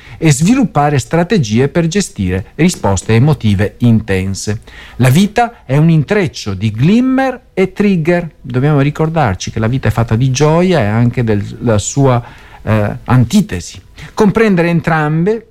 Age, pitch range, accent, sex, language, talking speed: 50-69, 110-165 Hz, native, male, Italian, 130 wpm